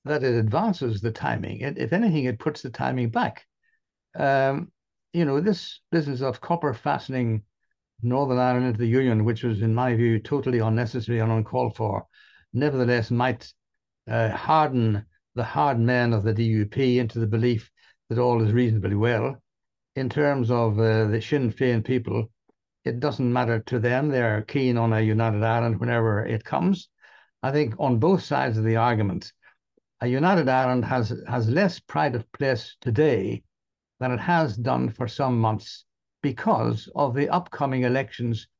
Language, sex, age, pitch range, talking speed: English, male, 60-79, 115-140 Hz, 165 wpm